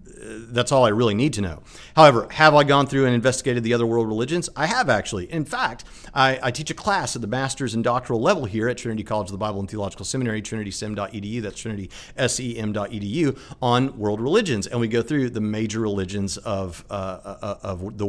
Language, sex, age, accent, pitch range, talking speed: English, male, 40-59, American, 105-130 Hz, 210 wpm